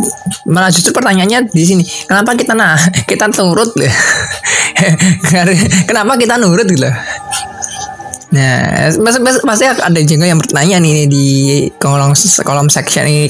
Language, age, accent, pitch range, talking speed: Indonesian, 20-39, native, 150-190 Hz, 135 wpm